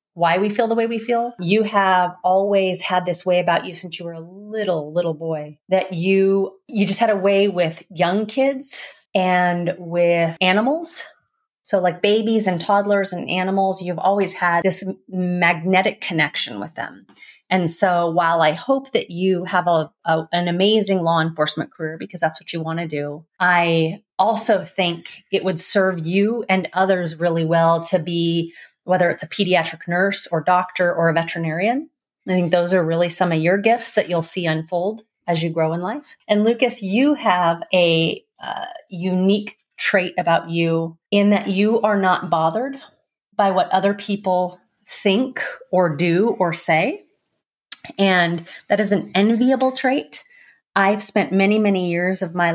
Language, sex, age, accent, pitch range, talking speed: English, female, 30-49, American, 170-205 Hz, 170 wpm